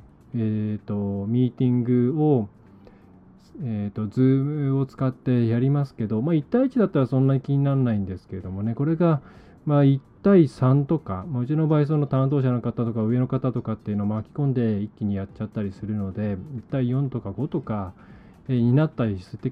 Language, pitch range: Japanese, 110-145 Hz